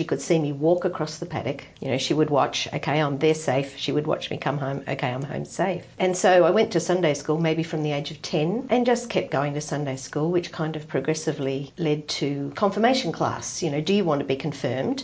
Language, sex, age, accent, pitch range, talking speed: English, female, 50-69, Australian, 150-180 Hz, 250 wpm